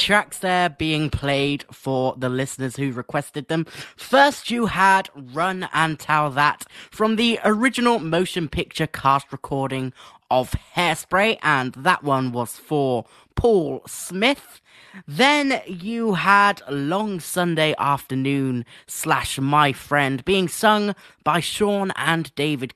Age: 20-39